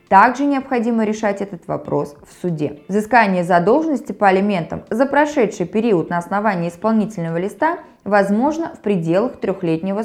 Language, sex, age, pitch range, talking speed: Russian, female, 20-39, 185-255 Hz, 130 wpm